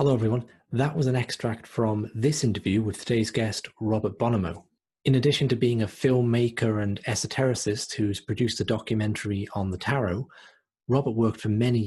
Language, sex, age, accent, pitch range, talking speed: English, male, 30-49, British, 105-120 Hz, 165 wpm